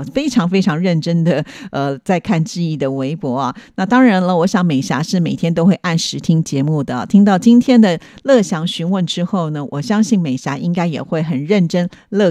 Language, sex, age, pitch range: Chinese, female, 50-69, 155-200 Hz